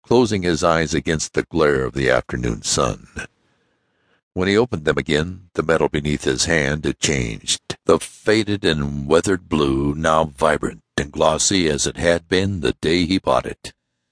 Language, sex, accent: English, male, American